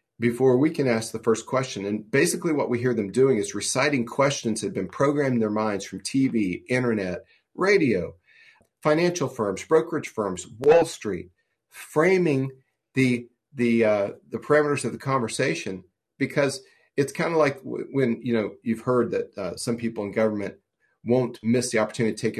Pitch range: 110-145 Hz